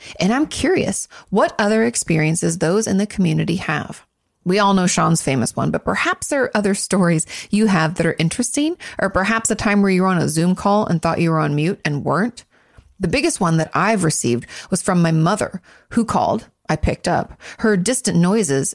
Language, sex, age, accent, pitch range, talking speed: English, female, 30-49, American, 165-210 Hz, 210 wpm